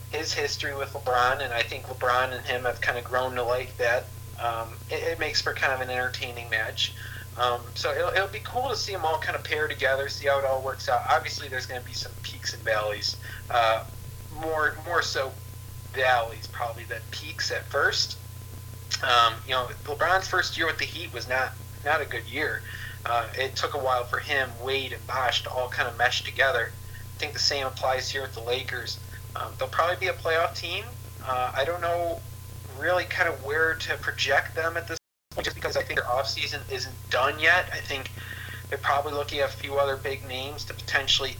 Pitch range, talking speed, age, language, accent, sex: 105-130 Hz, 215 wpm, 40-59, English, American, male